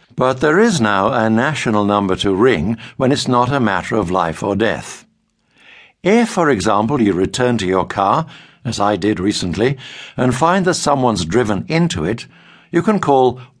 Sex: male